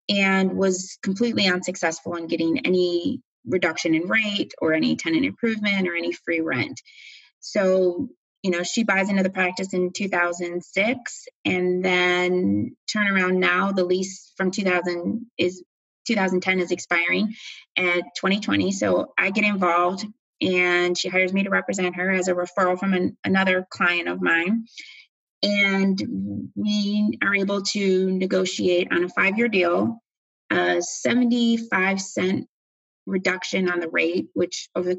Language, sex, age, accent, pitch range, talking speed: English, female, 20-39, American, 175-205 Hz, 140 wpm